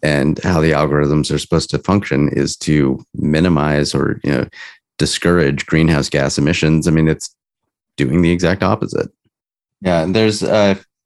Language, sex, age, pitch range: English, male, 30-49, 80-95 Hz